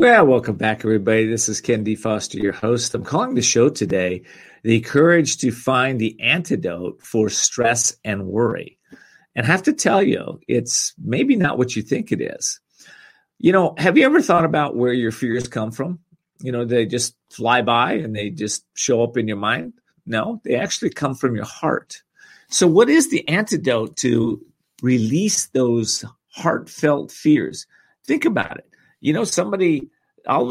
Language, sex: English, male